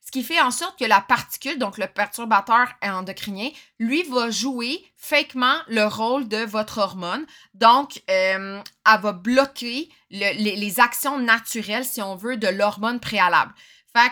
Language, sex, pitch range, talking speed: French, female, 205-260 Hz, 155 wpm